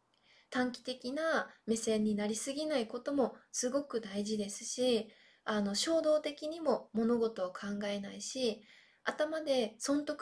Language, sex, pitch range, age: Japanese, female, 215-275 Hz, 20-39